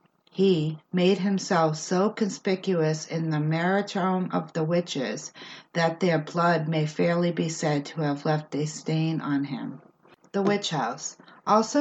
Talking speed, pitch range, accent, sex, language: 145 wpm, 170-200 Hz, American, female, English